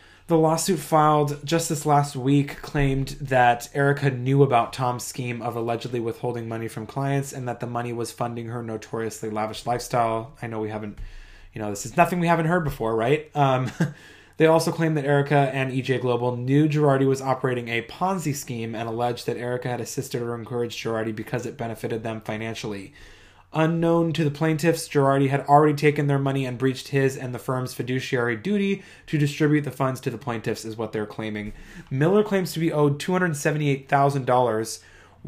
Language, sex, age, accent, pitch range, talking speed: English, male, 20-39, American, 115-145 Hz, 185 wpm